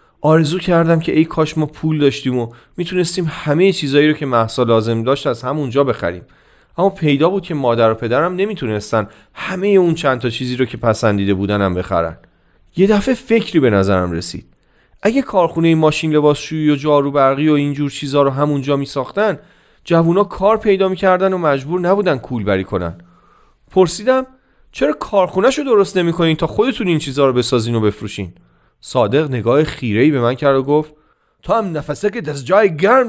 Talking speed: 175 wpm